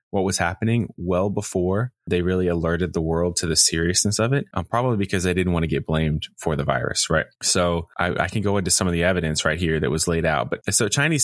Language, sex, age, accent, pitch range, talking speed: English, male, 20-39, American, 80-95 Hz, 245 wpm